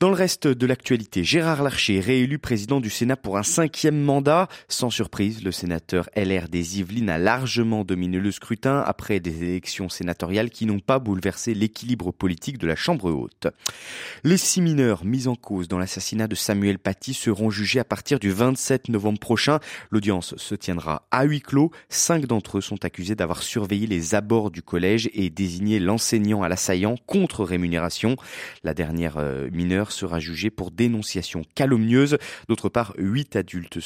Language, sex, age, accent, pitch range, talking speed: French, male, 30-49, French, 95-130 Hz, 170 wpm